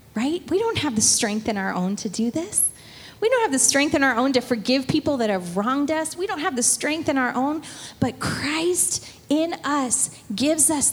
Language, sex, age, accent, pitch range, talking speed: English, female, 30-49, American, 225-310 Hz, 225 wpm